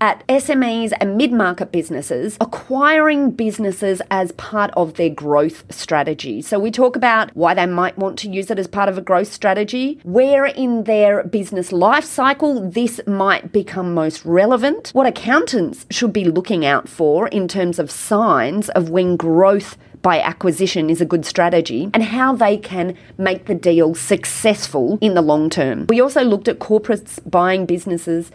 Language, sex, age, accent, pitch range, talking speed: English, female, 30-49, Australian, 175-240 Hz, 170 wpm